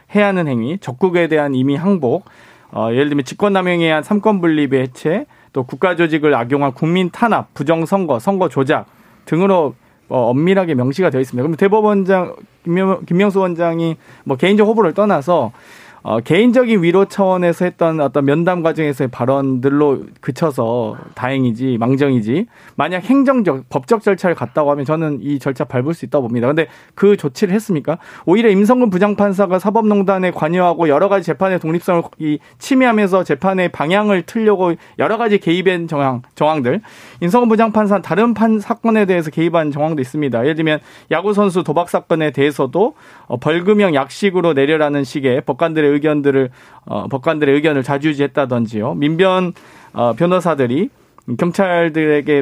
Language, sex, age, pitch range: Korean, male, 40-59, 140-190 Hz